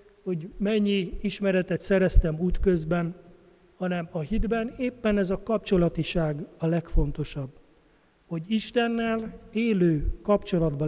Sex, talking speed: male, 100 wpm